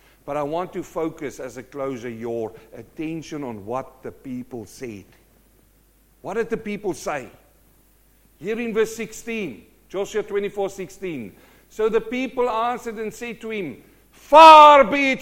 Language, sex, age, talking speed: English, male, 50-69, 150 wpm